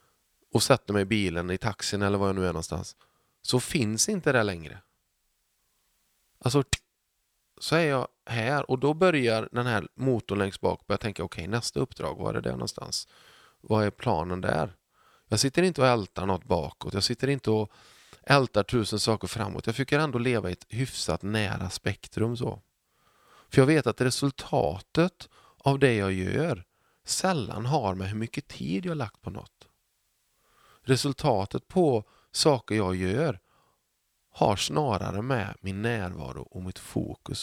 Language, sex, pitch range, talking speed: Swedish, male, 100-130 Hz, 170 wpm